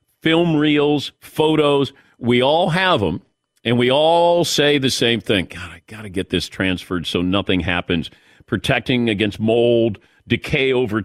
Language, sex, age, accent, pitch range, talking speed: English, male, 50-69, American, 100-135 Hz, 160 wpm